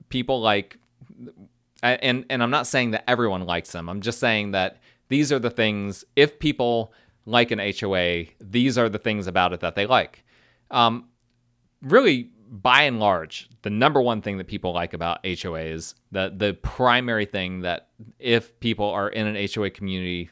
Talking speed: 175 wpm